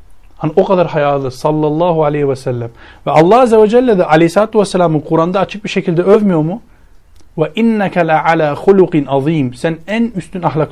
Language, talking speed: Turkish, 180 wpm